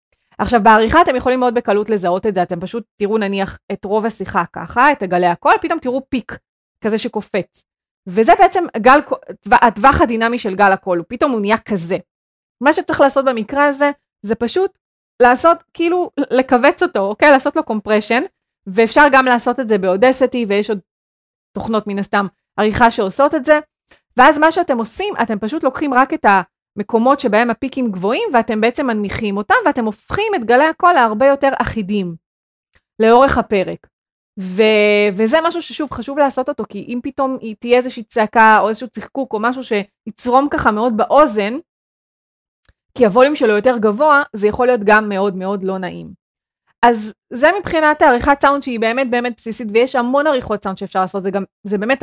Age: 30-49